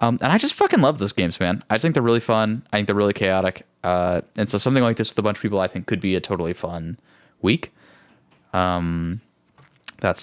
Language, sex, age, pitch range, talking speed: English, male, 10-29, 95-115 Hz, 240 wpm